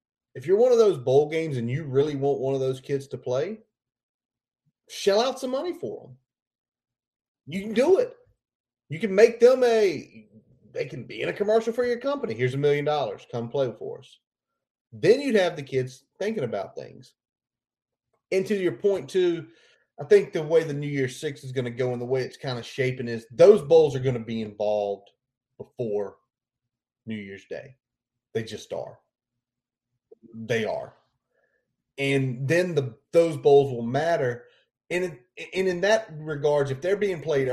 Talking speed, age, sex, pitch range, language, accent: 185 wpm, 30-49, male, 125-185 Hz, English, American